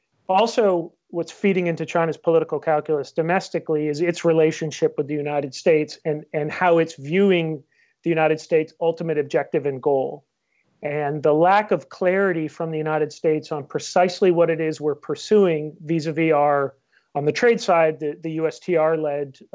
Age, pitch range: 40-59, 150-175 Hz